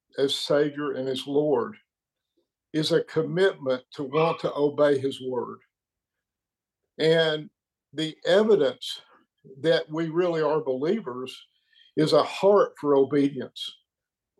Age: 50-69